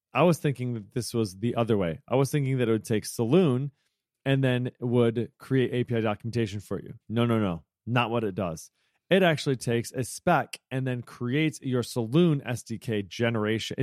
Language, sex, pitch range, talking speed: English, male, 115-140 Hz, 190 wpm